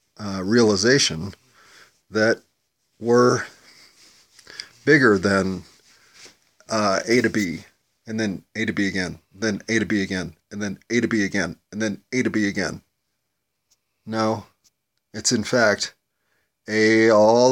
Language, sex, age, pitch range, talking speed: English, male, 30-49, 105-130 Hz, 130 wpm